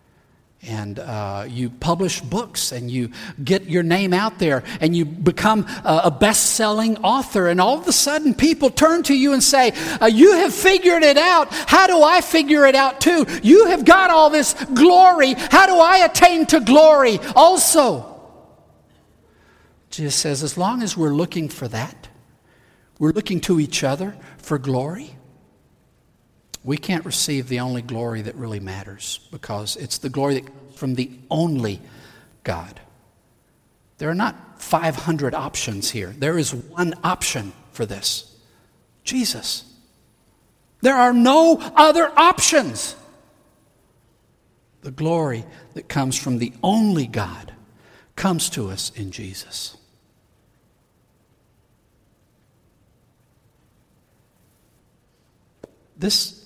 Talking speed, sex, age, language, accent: 130 wpm, male, 50-69, English, American